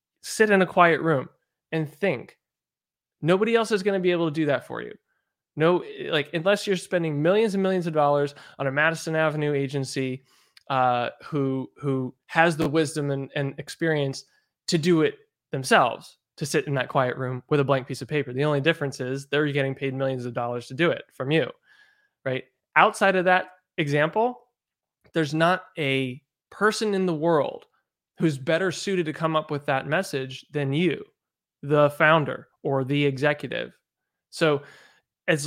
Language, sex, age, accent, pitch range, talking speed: English, male, 20-39, American, 135-165 Hz, 175 wpm